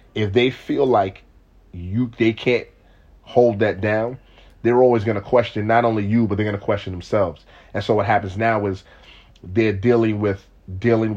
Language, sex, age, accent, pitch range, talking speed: English, male, 30-49, American, 95-115 Hz, 185 wpm